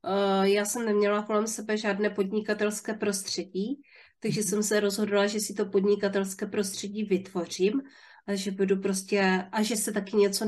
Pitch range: 190-215 Hz